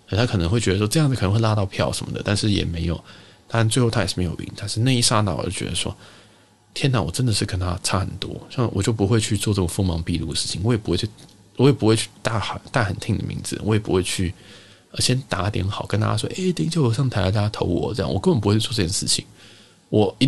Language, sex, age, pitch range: Chinese, male, 20-39, 95-120 Hz